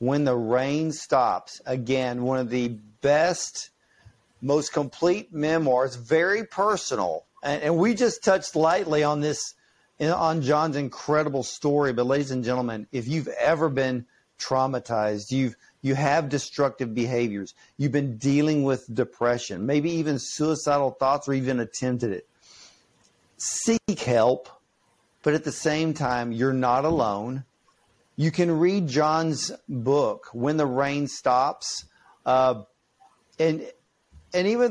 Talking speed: 130 wpm